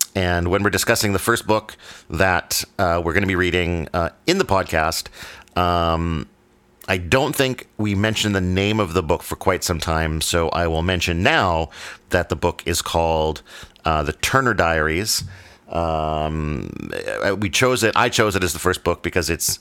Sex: male